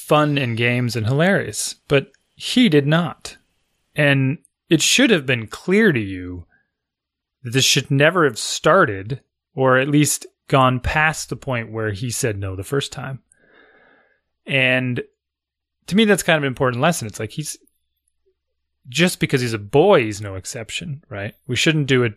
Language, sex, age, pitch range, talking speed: English, male, 20-39, 100-145 Hz, 170 wpm